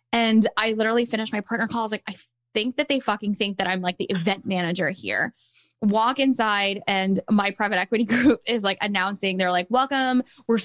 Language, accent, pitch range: English, American, 195-235 Hz